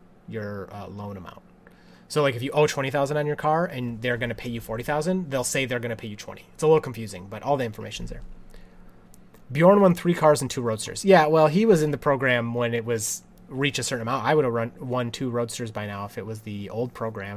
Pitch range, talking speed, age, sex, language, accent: 110-145 Hz, 260 wpm, 30-49, male, English, American